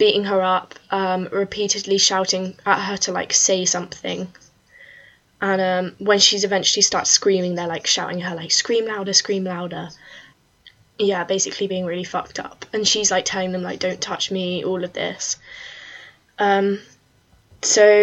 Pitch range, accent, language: 180-200 Hz, British, English